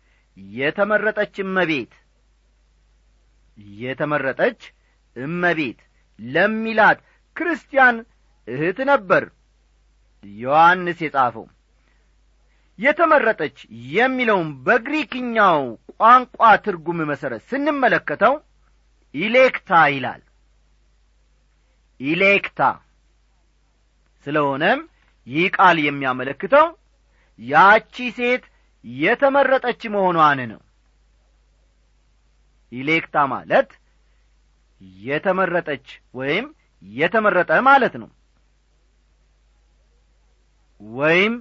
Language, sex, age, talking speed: Amharic, male, 40-59, 50 wpm